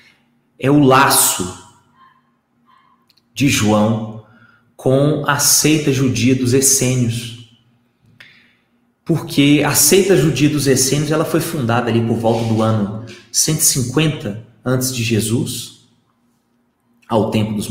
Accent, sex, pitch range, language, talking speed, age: Brazilian, male, 120-160 Hz, Portuguese, 110 wpm, 30-49